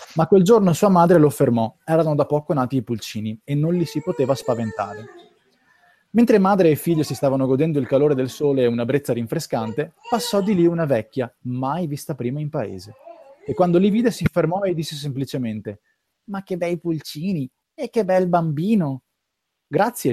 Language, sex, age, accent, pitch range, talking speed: Italian, male, 20-39, native, 125-185 Hz, 185 wpm